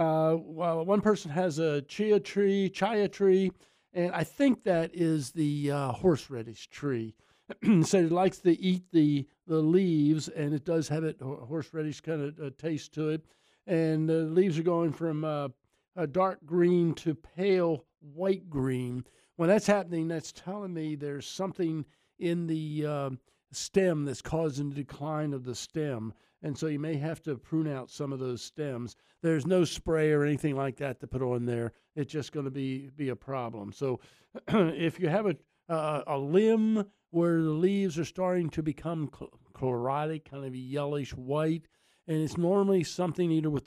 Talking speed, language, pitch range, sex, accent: 180 wpm, English, 140-180 Hz, male, American